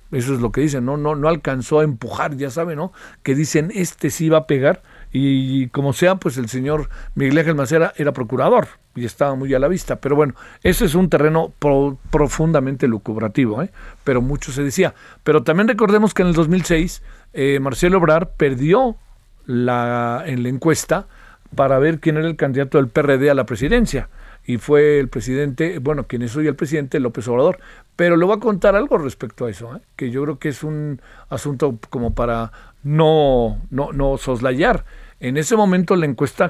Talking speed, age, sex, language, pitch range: 195 wpm, 50-69, male, Spanish, 130-165 Hz